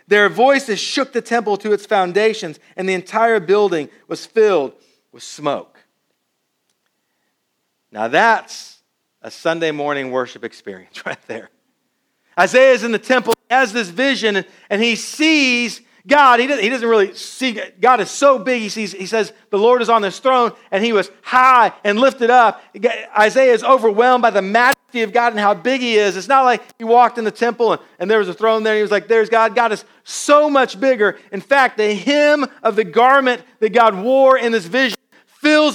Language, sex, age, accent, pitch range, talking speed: English, male, 40-59, American, 215-265 Hz, 195 wpm